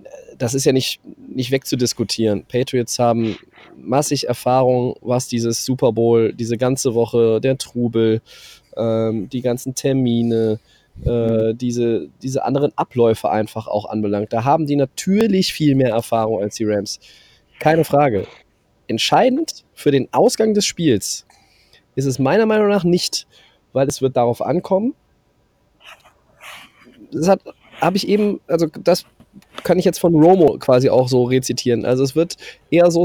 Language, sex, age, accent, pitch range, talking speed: German, male, 20-39, German, 120-150 Hz, 145 wpm